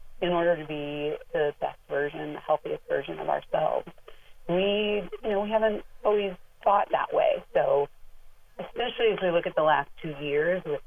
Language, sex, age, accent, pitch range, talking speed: English, female, 30-49, American, 150-210 Hz, 175 wpm